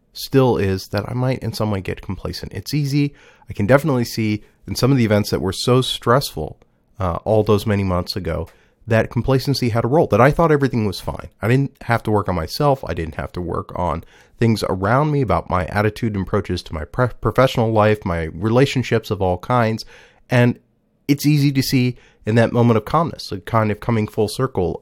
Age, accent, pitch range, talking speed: 30-49, American, 95-125 Hz, 215 wpm